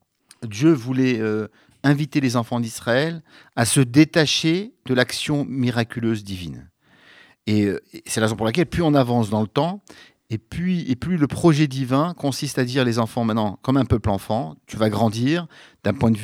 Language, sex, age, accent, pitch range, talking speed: French, male, 50-69, French, 110-145 Hz, 190 wpm